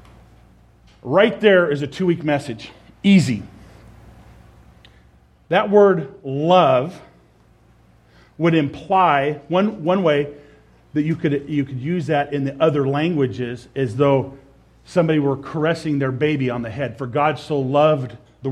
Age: 40-59